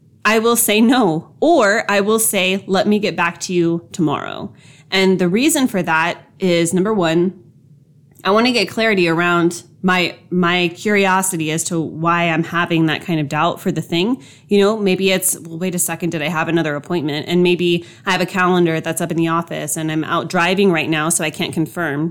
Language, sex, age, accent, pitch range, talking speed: English, female, 20-39, American, 165-200 Hz, 210 wpm